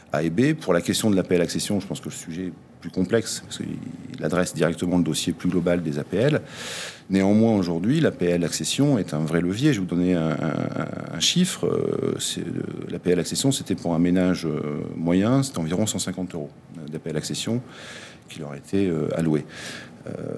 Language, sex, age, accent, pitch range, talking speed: French, male, 40-59, French, 85-100 Hz, 185 wpm